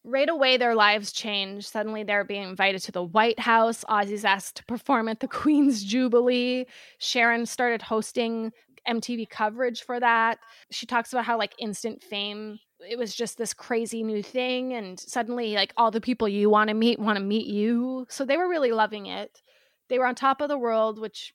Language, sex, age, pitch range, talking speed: English, female, 20-39, 205-240 Hz, 195 wpm